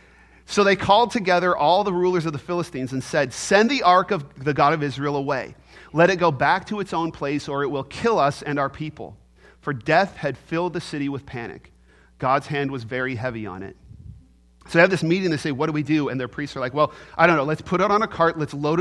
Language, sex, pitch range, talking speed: English, male, 135-175 Hz, 255 wpm